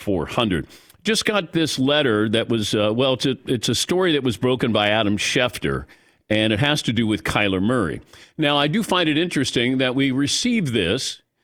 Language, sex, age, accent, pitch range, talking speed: English, male, 50-69, American, 115-155 Hz, 195 wpm